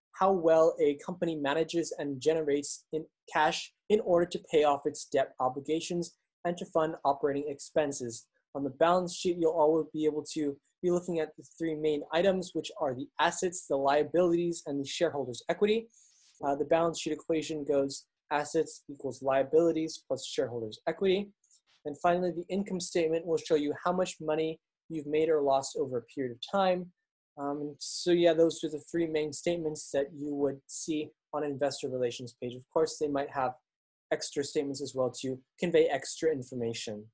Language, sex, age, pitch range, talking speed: English, male, 20-39, 140-170 Hz, 180 wpm